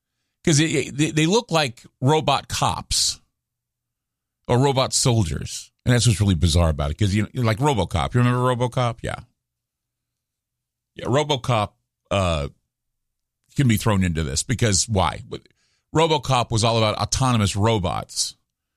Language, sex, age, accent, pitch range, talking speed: English, male, 50-69, American, 100-130 Hz, 135 wpm